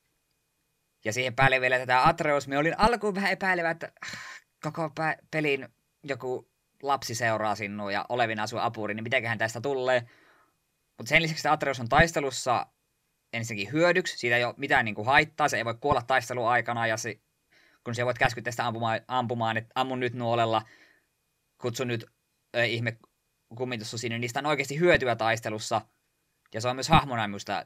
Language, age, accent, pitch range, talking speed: Finnish, 20-39, native, 115-145 Hz, 170 wpm